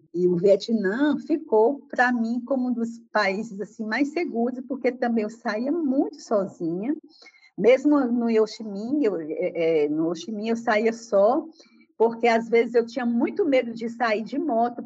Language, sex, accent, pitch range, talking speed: Portuguese, female, Brazilian, 235-315 Hz, 155 wpm